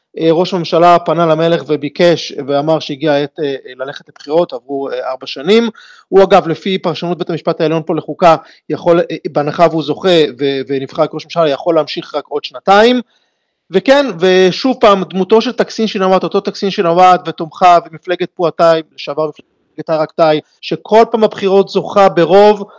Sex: male